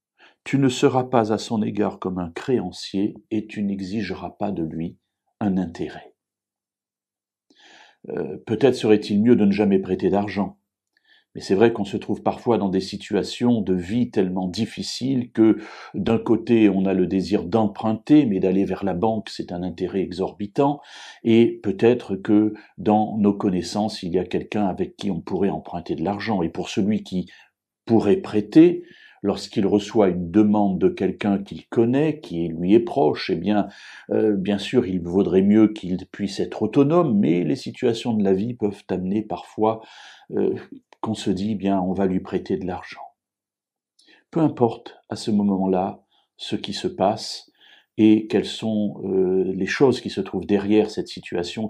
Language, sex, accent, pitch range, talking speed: French, male, French, 95-110 Hz, 170 wpm